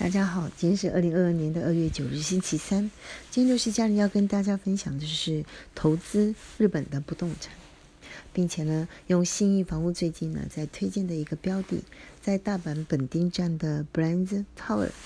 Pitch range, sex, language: 155-190 Hz, female, Chinese